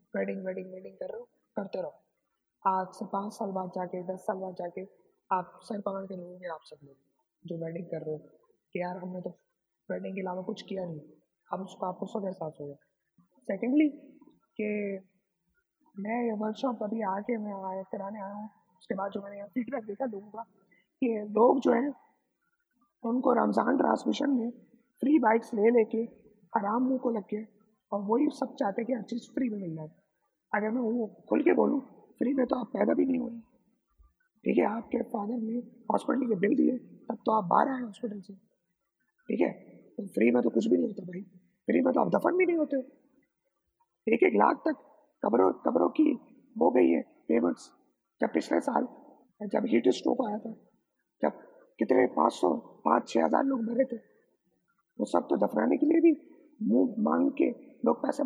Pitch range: 195-265 Hz